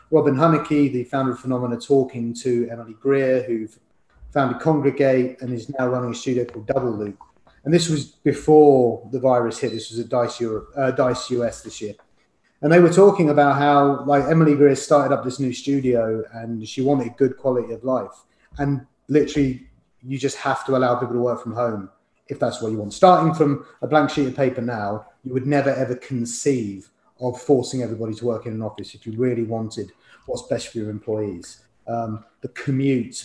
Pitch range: 120-140 Hz